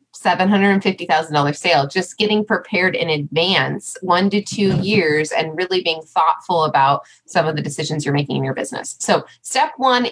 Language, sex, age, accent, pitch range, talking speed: English, female, 20-39, American, 165-230 Hz, 160 wpm